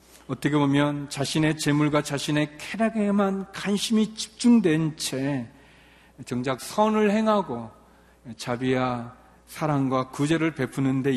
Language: Korean